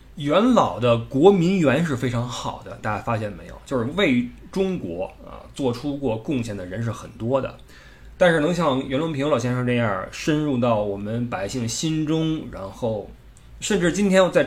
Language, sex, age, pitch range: Chinese, male, 20-39, 105-140 Hz